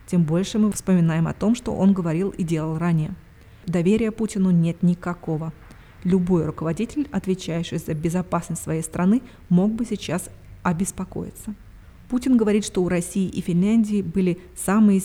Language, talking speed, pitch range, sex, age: Russian, 145 wpm, 165-190 Hz, female, 20-39